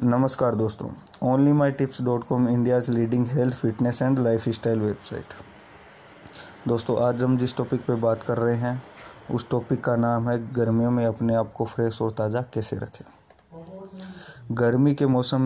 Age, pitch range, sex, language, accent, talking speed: 20-39, 115-125 Hz, male, Hindi, native, 150 wpm